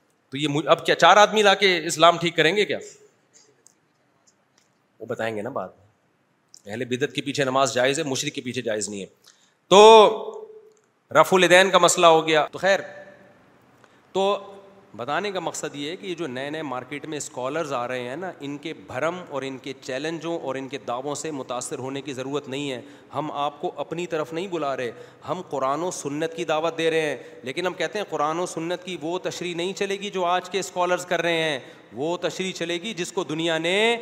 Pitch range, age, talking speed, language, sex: 155-190 Hz, 40-59, 215 wpm, Urdu, male